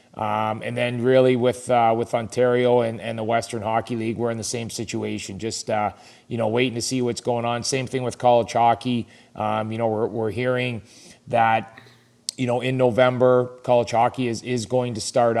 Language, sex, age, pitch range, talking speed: English, male, 30-49, 110-125 Hz, 205 wpm